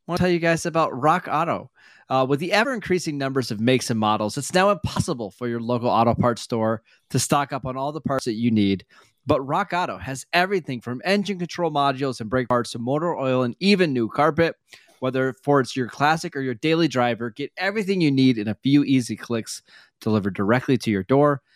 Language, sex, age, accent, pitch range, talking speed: English, male, 20-39, American, 120-150 Hz, 220 wpm